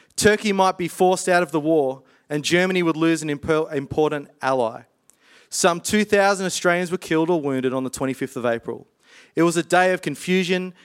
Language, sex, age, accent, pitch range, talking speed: English, male, 30-49, Australian, 140-180 Hz, 185 wpm